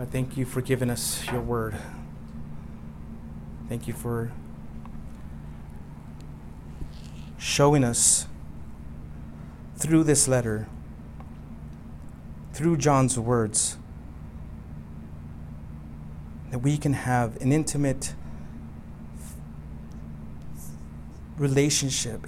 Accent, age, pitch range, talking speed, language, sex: American, 30-49, 75-120 Hz, 70 wpm, English, male